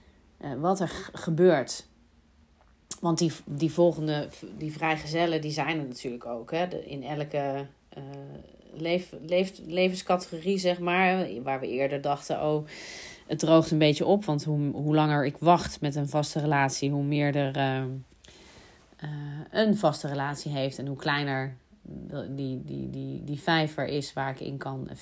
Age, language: 30-49, Dutch